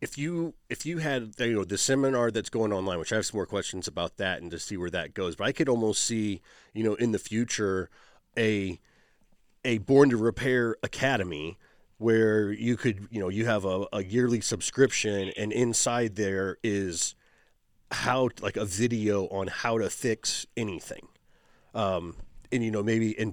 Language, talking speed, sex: English, 190 wpm, male